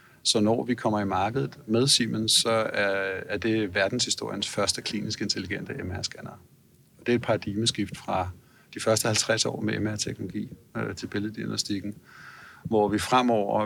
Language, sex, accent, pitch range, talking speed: Danish, male, native, 100-120 Hz, 145 wpm